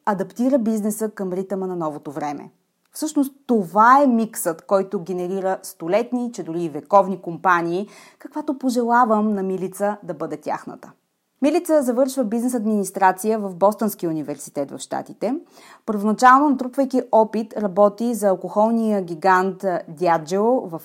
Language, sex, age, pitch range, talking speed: Bulgarian, female, 30-49, 175-235 Hz, 125 wpm